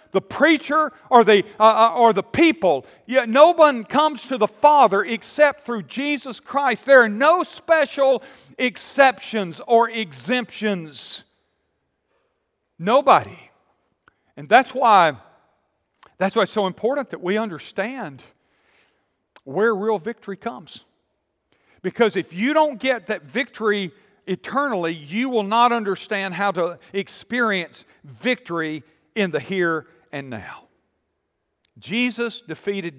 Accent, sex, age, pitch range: American, male, 50-69, 180-260 Hz